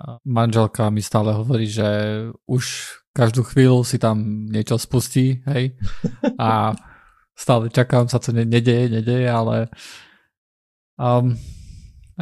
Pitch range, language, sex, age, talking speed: 115-130 Hz, Slovak, male, 20-39, 110 wpm